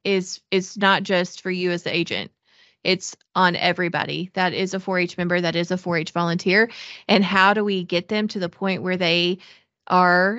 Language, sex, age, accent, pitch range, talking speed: English, female, 30-49, American, 180-205 Hz, 195 wpm